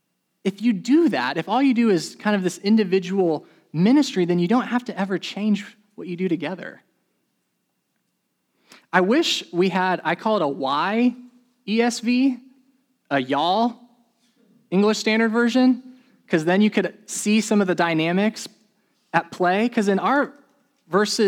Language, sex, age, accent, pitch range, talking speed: English, male, 20-39, American, 155-235 Hz, 150 wpm